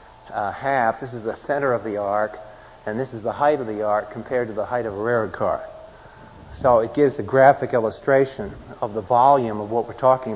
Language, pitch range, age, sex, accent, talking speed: English, 110-135 Hz, 40-59, male, American, 220 wpm